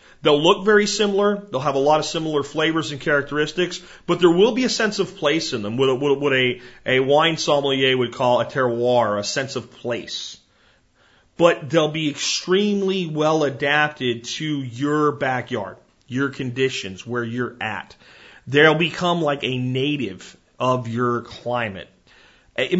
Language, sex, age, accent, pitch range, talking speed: English, male, 40-59, American, 125-165 Hz, 155 wpm